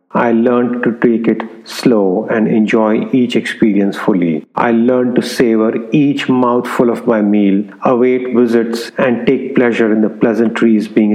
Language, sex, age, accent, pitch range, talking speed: English, male, 50-69, Indian, 110-140 Hz, 155 wpm